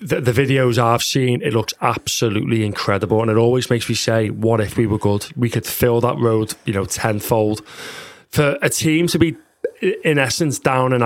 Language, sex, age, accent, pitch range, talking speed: English, male, 30-49, British, 120-150 Hz, 200 wpm